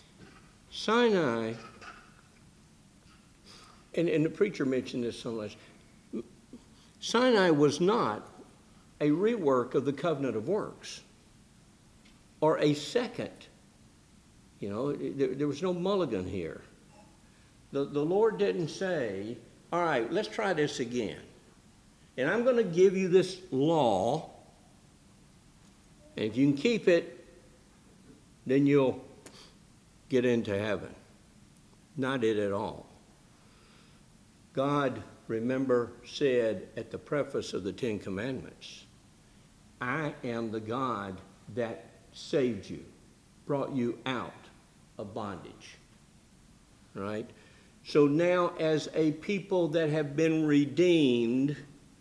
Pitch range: 125-175 Hz